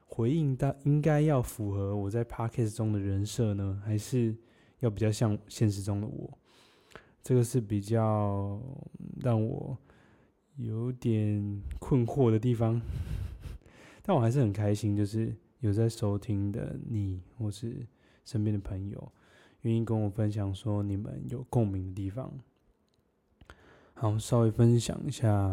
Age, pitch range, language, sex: 20-39, 105-125 Hz, Chinese, male